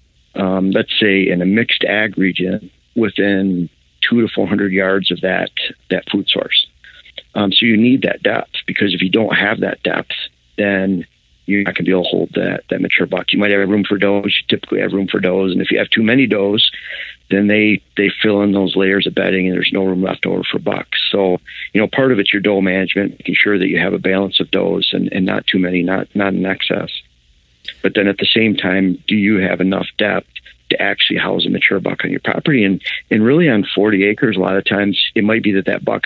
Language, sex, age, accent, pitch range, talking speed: English, male, 50-69, American, 95-105 Hz, 240 wpm